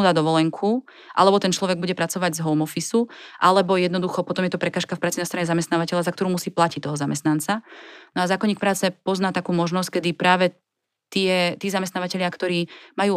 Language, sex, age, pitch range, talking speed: Slovak, female, 30-49, 165-190 Hz, 185 wpm